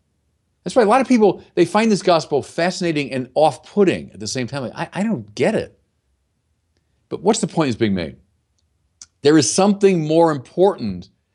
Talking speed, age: 180 wpm, 50-69